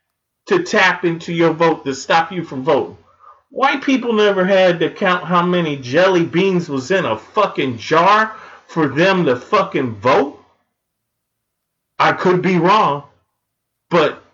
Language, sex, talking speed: English, male, 145 wpm